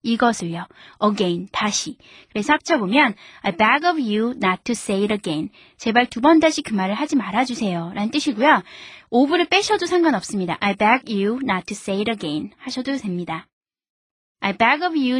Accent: native